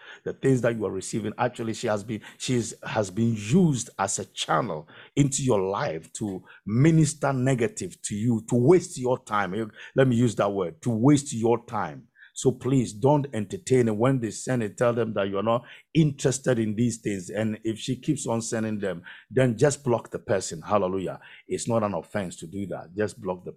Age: 50-69